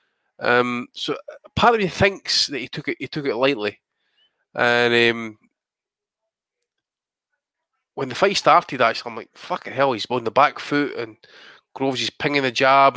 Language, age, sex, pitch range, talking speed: English, 20-39, male, 120-170 Hz, 165 wpm